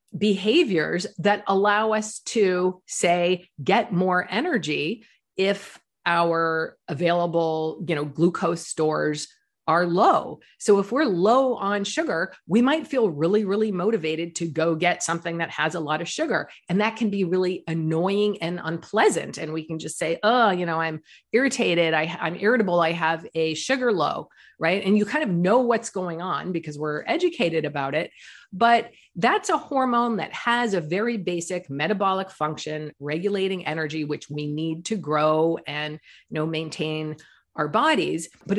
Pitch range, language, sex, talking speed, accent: 160-210 Hz, English, female, 165 wpm, American